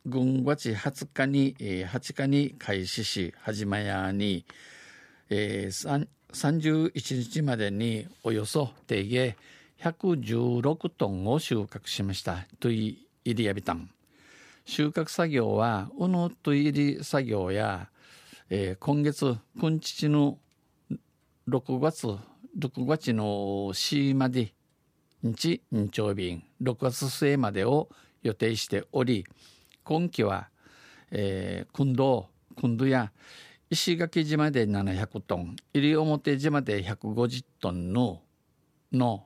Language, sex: Japanese, male